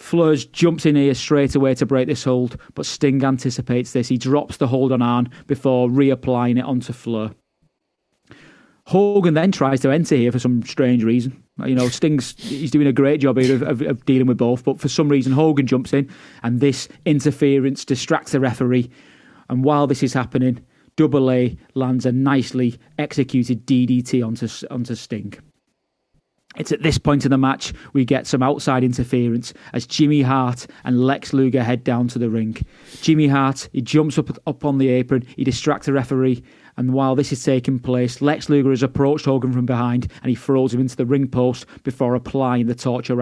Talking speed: 195 wpm